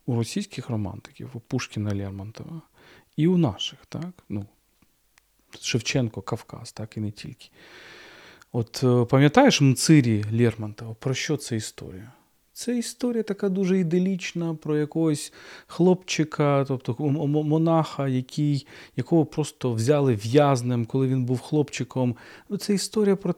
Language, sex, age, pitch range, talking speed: Ukrainian, male, 40-59, 115-155 Hz, 125 wpm